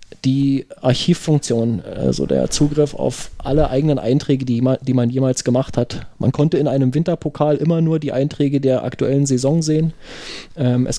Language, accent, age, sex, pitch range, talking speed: German, German, 30-49, male, 130-160 Hz, 160 wpm